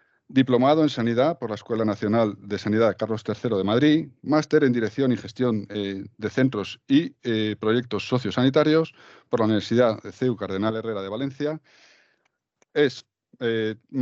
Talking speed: 160 wpm